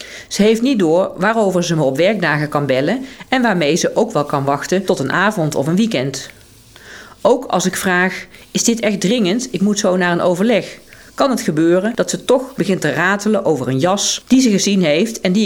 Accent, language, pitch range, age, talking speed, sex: Dutch, Dutch, 155-215 Hz, 40-59, 215 wpm, female